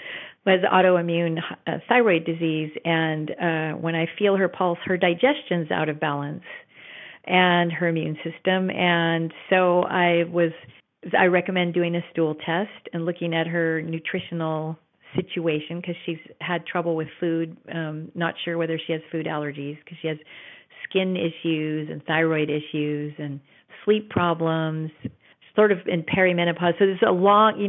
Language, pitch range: English, 165-185 Hz